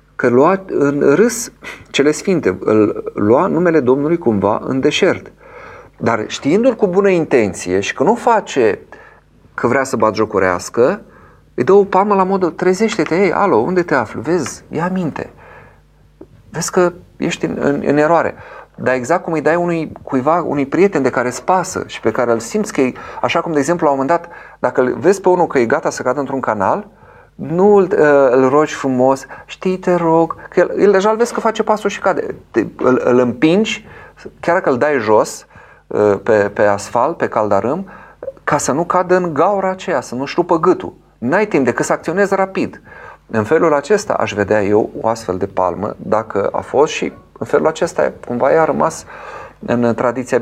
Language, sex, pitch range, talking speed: Romanian, male, 130-190 Hz, 190 wpm